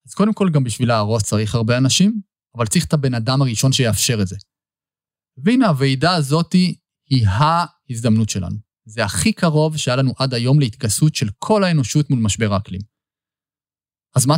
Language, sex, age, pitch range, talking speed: Hebrew, male, 20-39, 115-165 Hz, 165 wpm